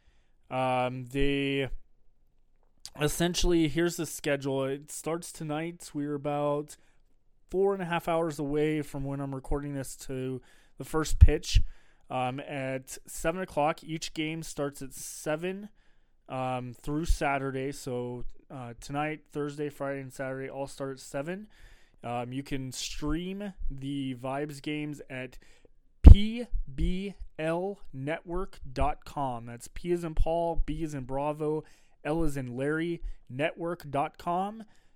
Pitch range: 130-160 Hz